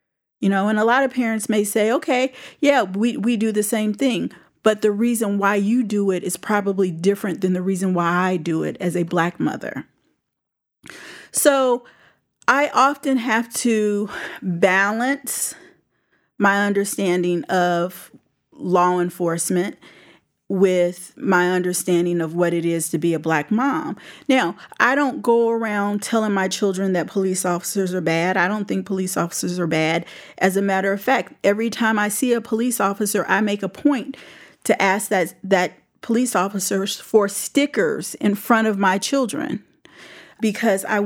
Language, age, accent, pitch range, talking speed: English, 40-59, American, 180-225 Hz, 160 wpm